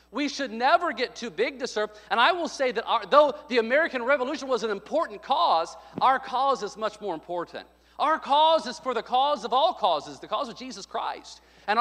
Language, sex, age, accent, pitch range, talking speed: English, male, 40-59, American, 200-280 Hz, 215 wpm